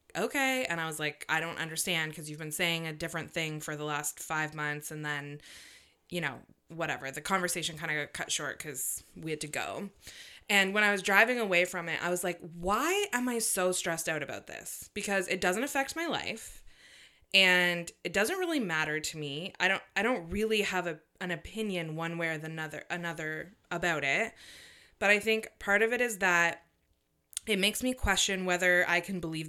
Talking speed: 205 wpm